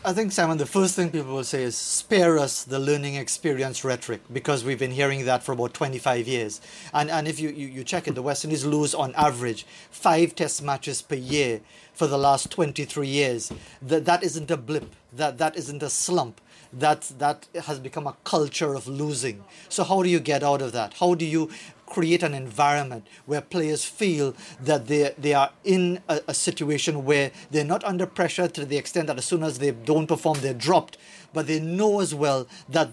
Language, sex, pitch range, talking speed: English, male, 140-175 Hz, 210 wpm